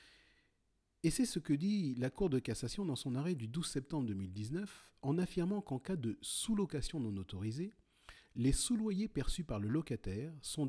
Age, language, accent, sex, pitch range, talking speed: 40-59, French, French, male, 100-150 Hz, 175 wpm